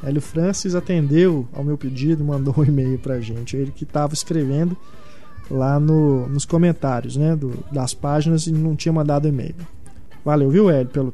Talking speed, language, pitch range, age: 180 wpm, Portuguese, 140-170 Hz, 20-39